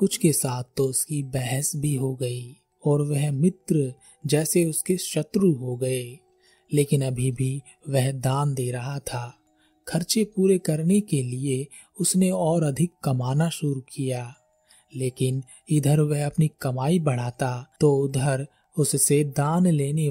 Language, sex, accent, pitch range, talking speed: Hindi, male, native, 130-160 Hz, 140 wpm